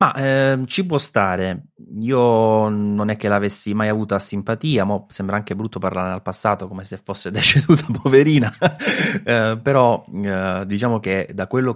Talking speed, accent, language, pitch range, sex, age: 170 wpm, native, Italian, 95-105 Hz, male, 20-39